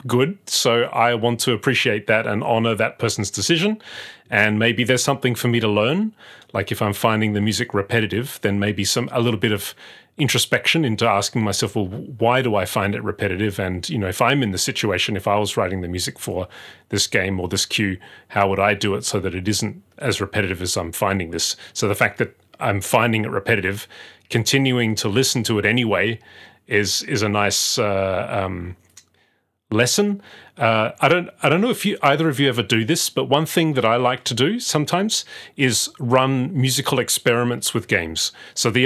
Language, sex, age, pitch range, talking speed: English, male, 30-49, 105-130 Hz, 200 wpm